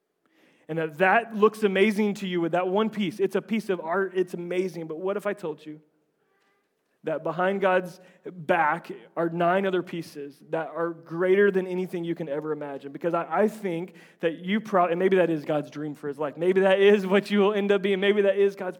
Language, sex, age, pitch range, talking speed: English, male, 30-49, 160-190 Hz, 215 wpm